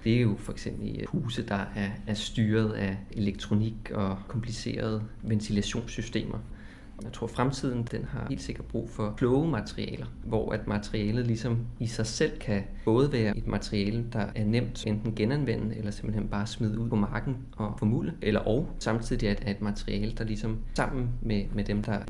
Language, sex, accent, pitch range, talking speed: Danish, male, native, 105-120 Hz, 180 wpm